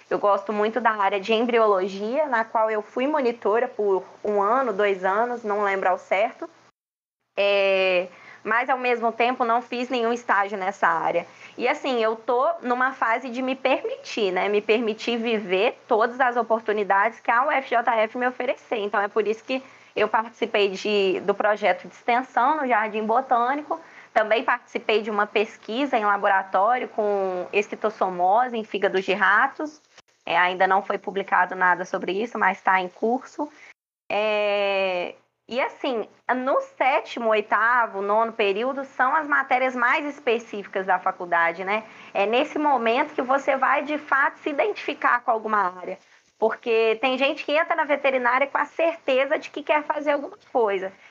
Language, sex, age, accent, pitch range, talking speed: Portuguese, female, 20-39, Brazilian, 200-260 Hz, 160 wpm